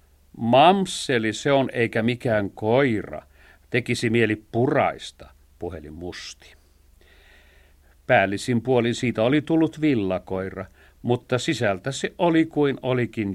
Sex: male